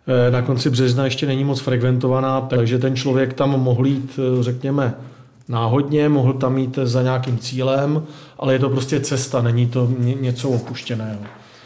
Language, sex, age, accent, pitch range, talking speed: Czech, male, 40-59, native, 125-140 Hz, 155 wpm